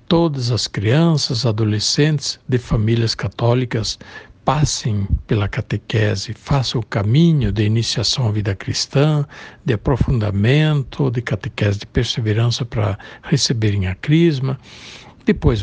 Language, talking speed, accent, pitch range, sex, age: Portuguese, 110 wpm, Brazilian, 110-140 Hz, male, 60-79